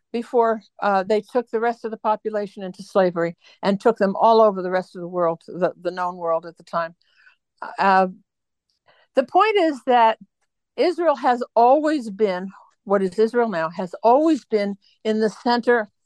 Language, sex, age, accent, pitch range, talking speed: English, female, 60-79, American, 185-240 Hz, 175 wpm